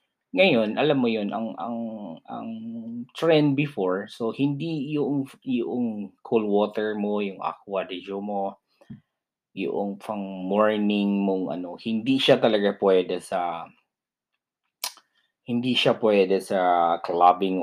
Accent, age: native, 20-39